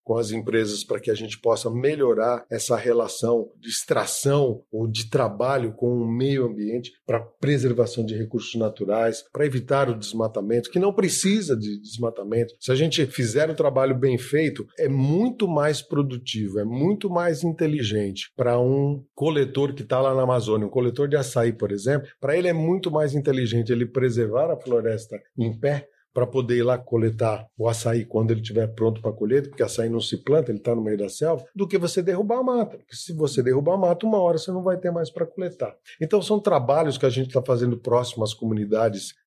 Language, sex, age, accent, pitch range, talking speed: Portuguese, male, 40-59, Brazilian, 115-155 Hz, 200 wpm